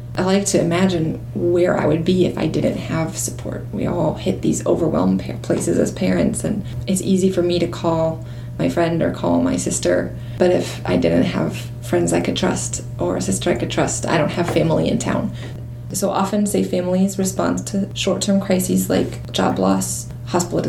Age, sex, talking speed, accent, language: 20-39, female, 190 wpm, American, English